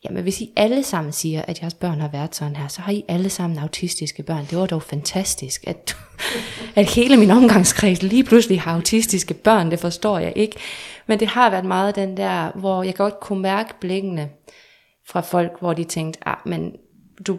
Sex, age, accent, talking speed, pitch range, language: female, 20-39, native, 205 wpm, 160-195 Hz, Danish